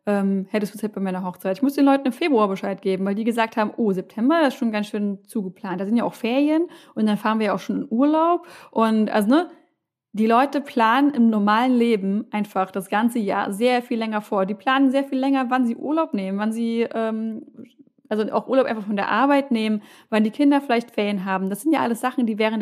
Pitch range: 205-260 Hz